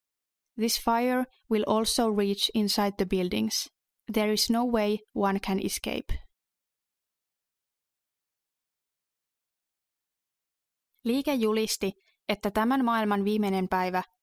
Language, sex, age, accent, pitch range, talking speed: Finnish, female, 20-39, native, 190-225 Hz, 95 wpm